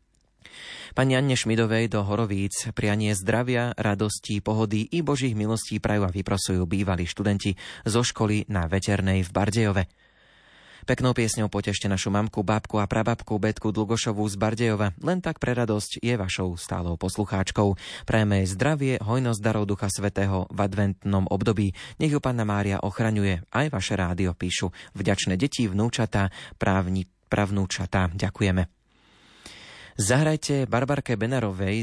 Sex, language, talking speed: male, Slovak, 130 wpm